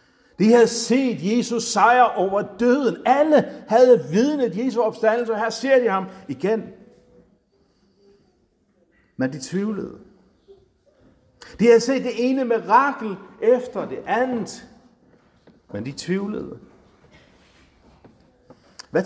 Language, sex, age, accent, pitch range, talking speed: Danish, male, 60-79, native, 170-250 Hz, 105 wpm